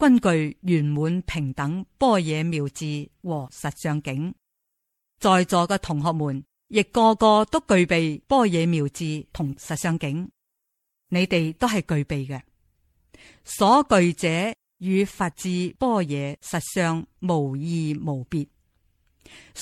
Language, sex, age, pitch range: Chinese, female, 50-69, 150-210 Hz